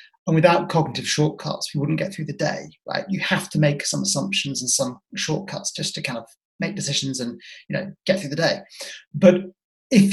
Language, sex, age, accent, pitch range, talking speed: English, male, 30-49, British, 145-190 Hz, 205 wpm